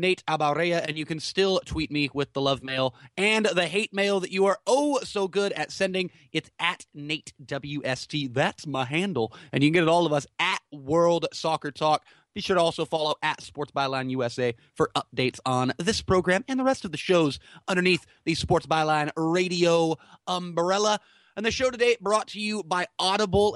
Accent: American